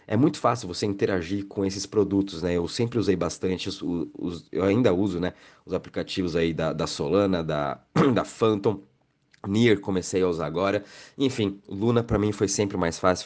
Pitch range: 95-110 Hz